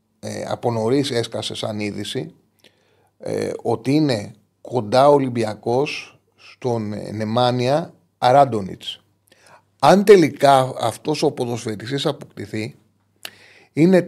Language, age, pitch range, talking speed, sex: Greek, 30-49, 110-140 Hz, 90 wpm, male